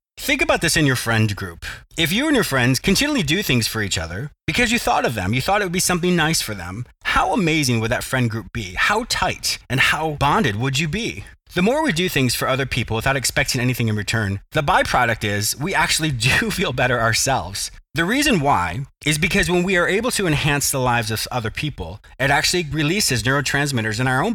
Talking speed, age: 225 wpm, 30-49